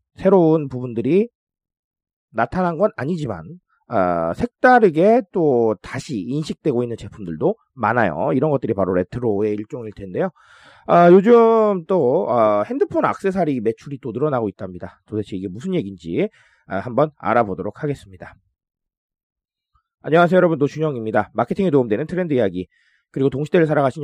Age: 30-49